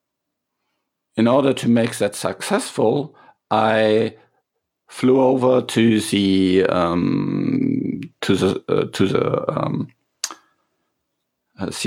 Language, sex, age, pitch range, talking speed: English, male, 50-69, 95-115 Hz, 85 wpm